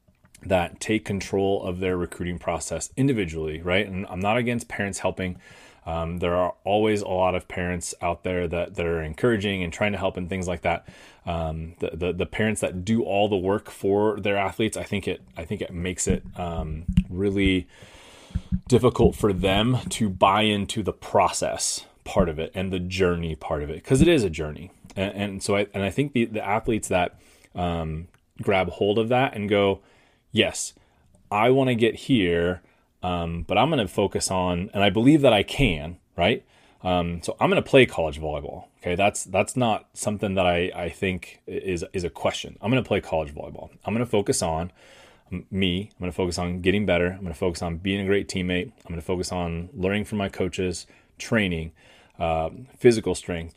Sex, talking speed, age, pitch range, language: male, 200 wpm, 30-49, 90-105 Hz, English